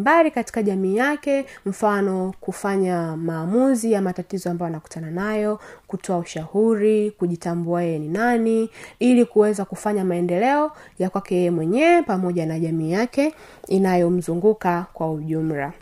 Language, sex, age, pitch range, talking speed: Swahili, female, 20-39, 190-235 Hz, 120 wpm